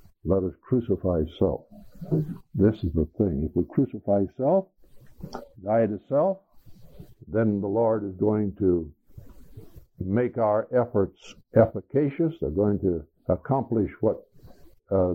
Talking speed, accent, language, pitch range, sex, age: 125 wpm, American, English, 95-115 Hz, male, 60-79